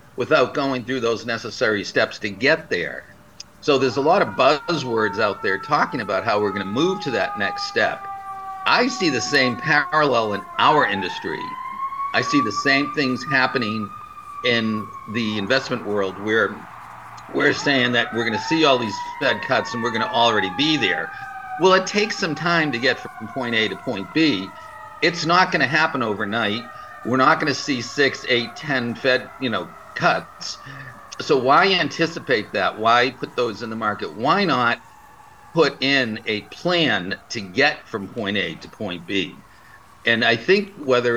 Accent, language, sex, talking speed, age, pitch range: American, English, male, 175 wpm, 50-69, 115-180 Hz